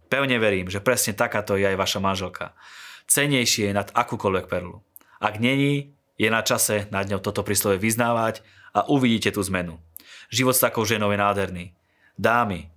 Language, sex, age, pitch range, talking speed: Slovak, male, 30-49, 100-125 Hz, 165 wpm